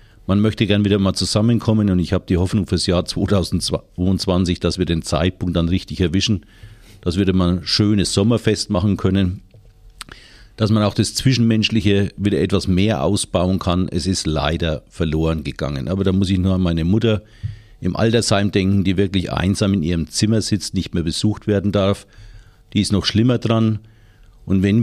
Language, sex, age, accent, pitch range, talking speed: German, male, 50-69, German, 90-105 Hz, 180 wpm